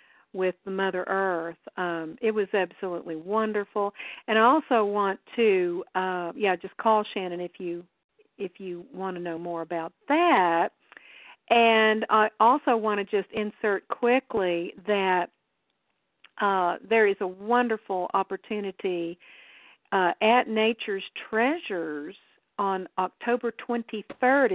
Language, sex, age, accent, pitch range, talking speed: English, female, 50-69, American, 185-225 Hz, 125 wpm